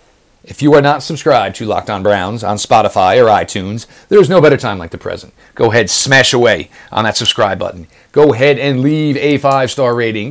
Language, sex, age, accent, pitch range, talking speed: English, male, 40-59, American, 95-130 Hz, 210 wpm